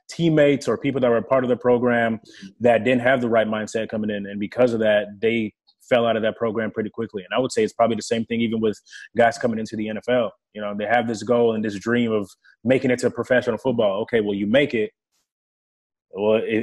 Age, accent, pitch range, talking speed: 20-39, American, 110-125 Hz, 240 wpm